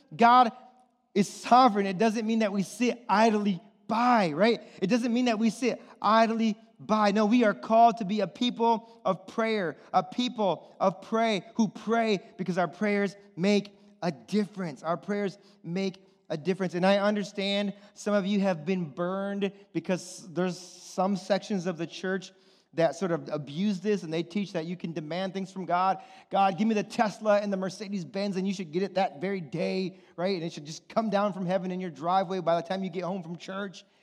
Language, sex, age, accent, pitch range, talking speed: English, male, 30-49, American, 175-220 Hz, 200 wpm